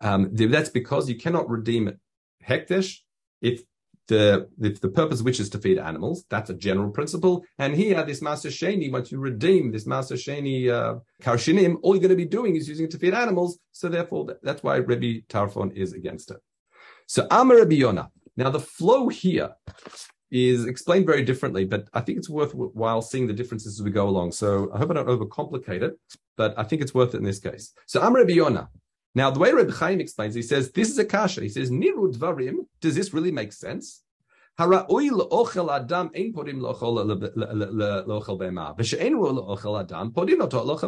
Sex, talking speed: male, 175 wpm